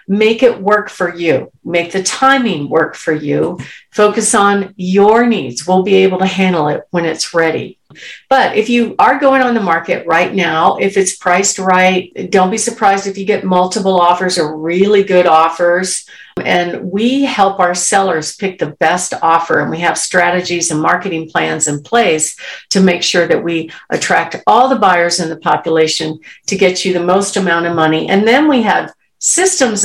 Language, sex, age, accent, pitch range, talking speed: English, female, 50-69, American, 170-205 Hz, 185 wpm